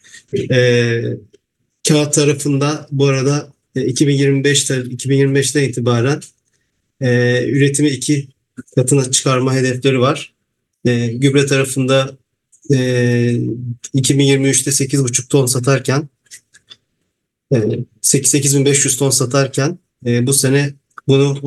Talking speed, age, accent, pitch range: 80 wpm, 40-59, Turkish, 125-145 Hz